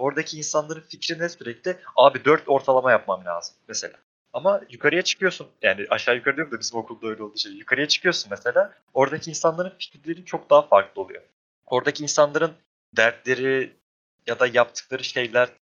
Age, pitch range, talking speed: 30-49, 120-160 Hz, 155 wpm